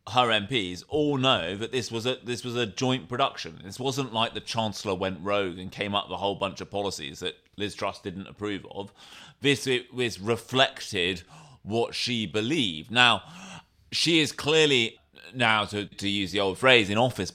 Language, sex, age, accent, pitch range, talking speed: English, male, 30-49, British, 100-125 Hz, 185 wpm